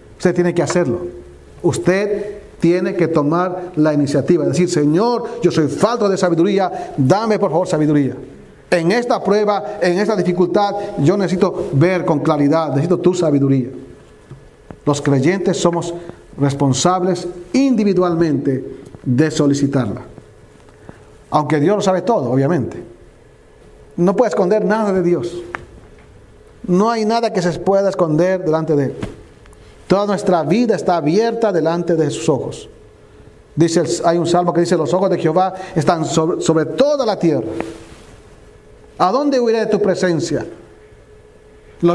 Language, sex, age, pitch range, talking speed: Spanish, male, 40-59, 150-195 Hz, 135 wpm